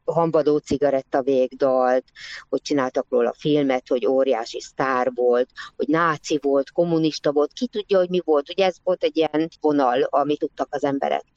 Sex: female